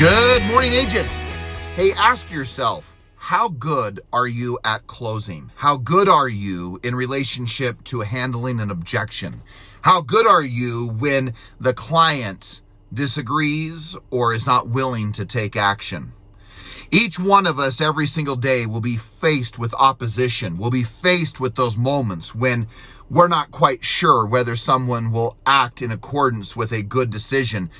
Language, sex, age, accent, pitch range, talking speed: English, male, 40-59, American, 110-155 Hz, 150 wpm